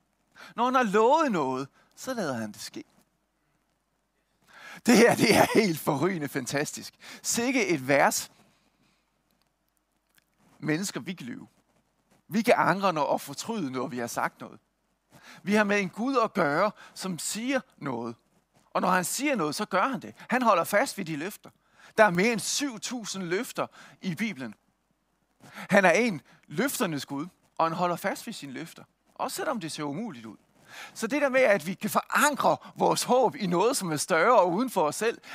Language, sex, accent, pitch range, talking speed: Danish, male, native, 170-235 Hz, 175 wpm